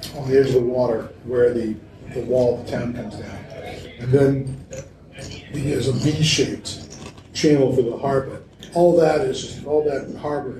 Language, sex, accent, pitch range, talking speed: English, male, American, 120-155 Hz, 175 wpm